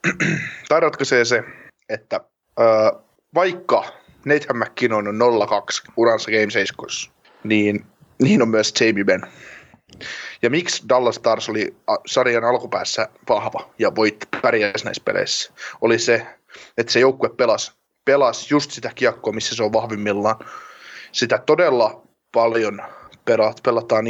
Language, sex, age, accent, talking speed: Finnish, male, 20-39, native, 125 wpm